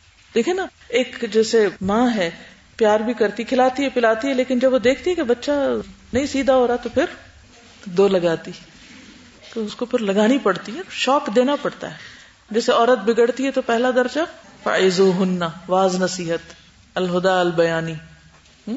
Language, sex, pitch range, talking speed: Urdu, female, 185-255 Hz, 155 wpm